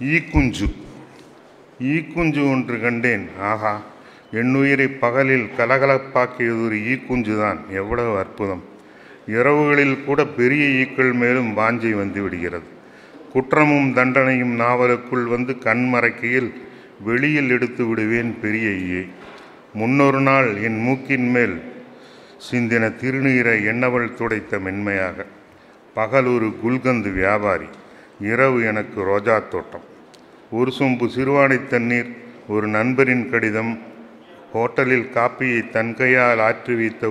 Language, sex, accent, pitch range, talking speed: Tamil, male, native, 105-125 Hz, 90 wpm